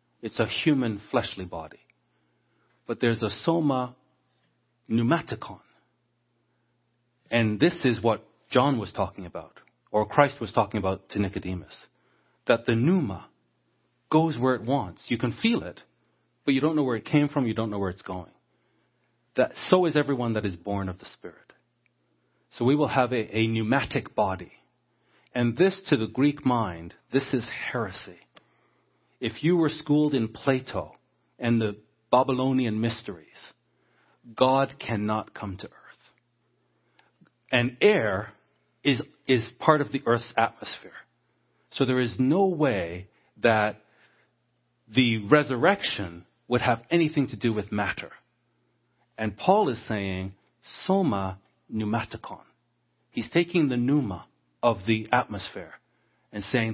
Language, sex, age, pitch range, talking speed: English, male, 40-59, 105-135 Hz, 140 wpm